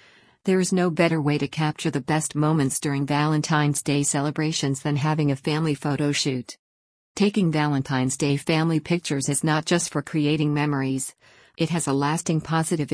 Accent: American